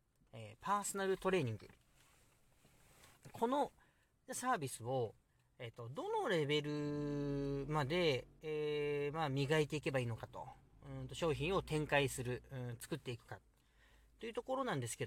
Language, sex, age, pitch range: Japanese, male, 40-59, 120-185 Hz